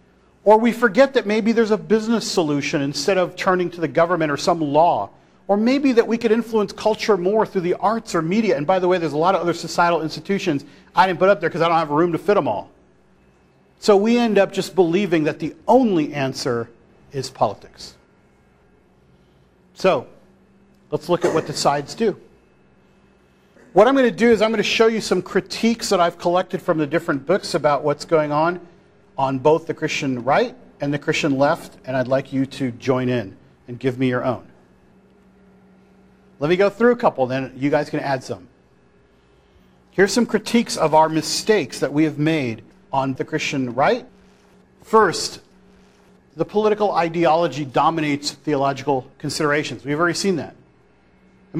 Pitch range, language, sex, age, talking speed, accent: 145-195 Hz, English, male, 40-59, 185 wpm, American